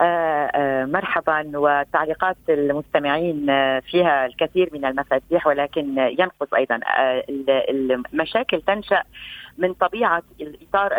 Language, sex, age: Arabic, female, 30-49